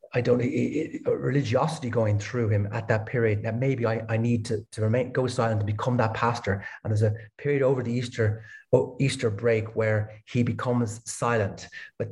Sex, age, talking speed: male, 30-49, 205 wpm